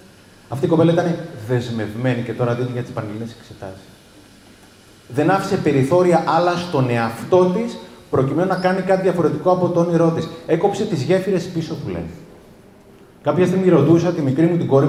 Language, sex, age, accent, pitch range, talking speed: Greek, male, 30-49, native, 120-175 Hz, 170 wpm